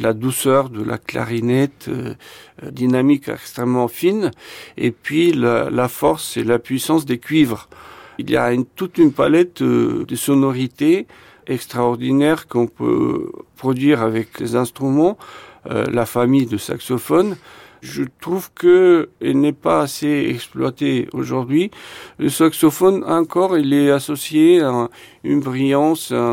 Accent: French